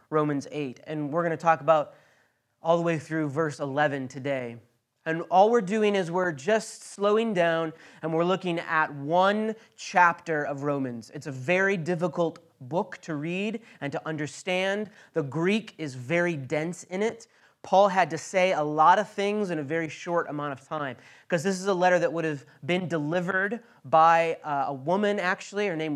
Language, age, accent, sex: English, 30-49, American, male